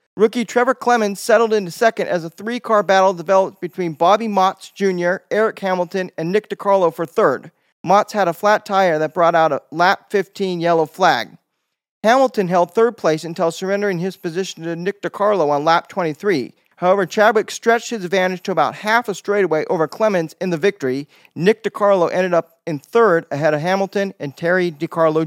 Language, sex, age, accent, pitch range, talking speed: English, male, 40-59, American, 175-220 Hz, 180 wpm